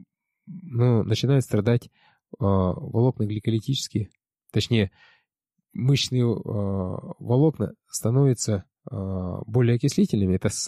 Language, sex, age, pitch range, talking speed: Russian, male, 20-39, 105-135 Hz, 85 wpm